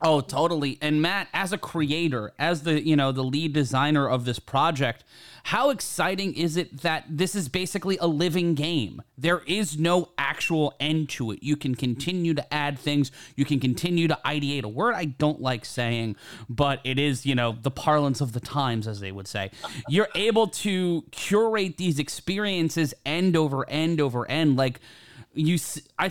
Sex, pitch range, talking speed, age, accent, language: male, 125-160 Hz, 185 wpm, 30-49, American, English